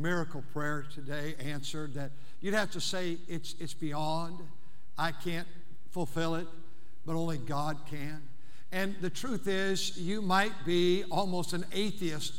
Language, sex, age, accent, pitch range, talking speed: English, male, 60-79, American, 155-220 Hz, 145 wpm